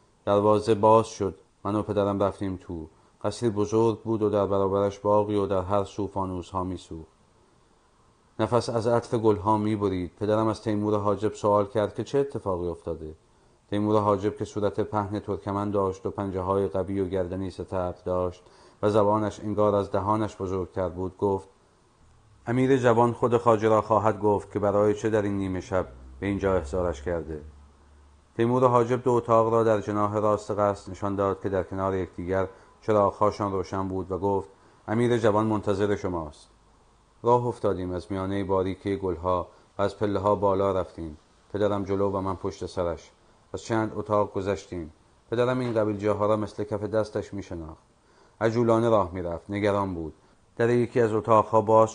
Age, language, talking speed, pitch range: 40-59, Persian, 160 wpm, 95-110 Hz